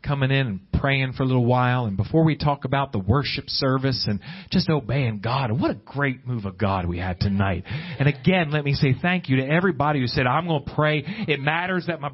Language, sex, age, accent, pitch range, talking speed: English, male, 40-59, American, 140-200 Hz, 235 wpm